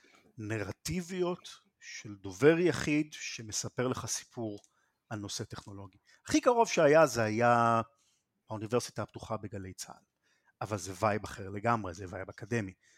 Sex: male